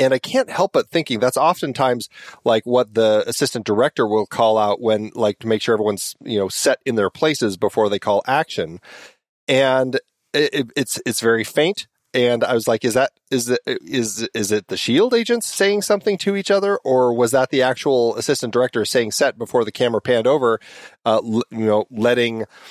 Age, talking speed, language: 40-59, 200 wpm, English